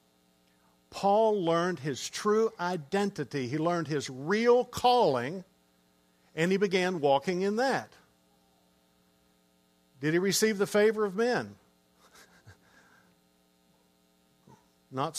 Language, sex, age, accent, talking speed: English, male, 50-69, American, 95 wpm